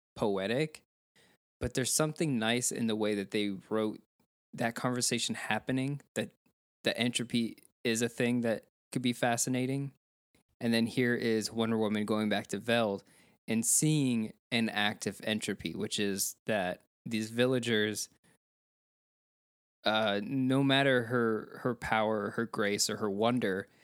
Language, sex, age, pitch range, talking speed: English, male, 20-39, 105-125 Hz, 140 wpm